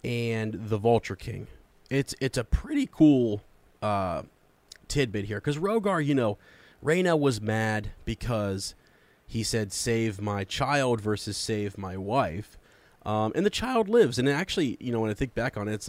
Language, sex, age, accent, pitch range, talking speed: English, male, 30-49, American, 100-120 Hz, 175 wpm